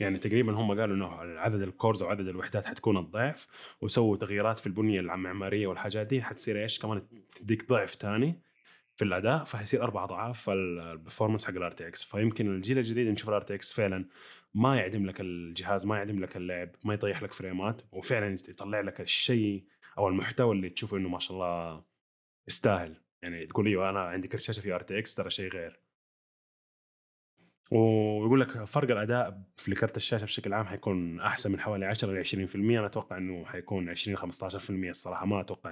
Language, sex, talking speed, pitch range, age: Arabic, male, 180 wpm, 90-110 Hz, 20-39